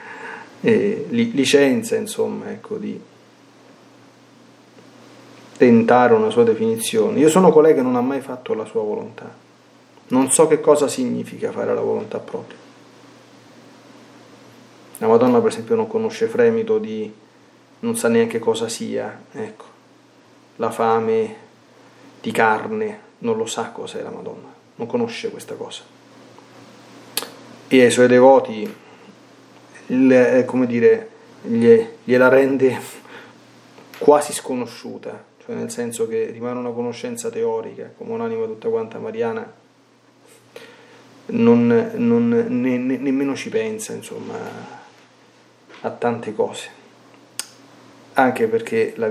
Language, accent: Italian, native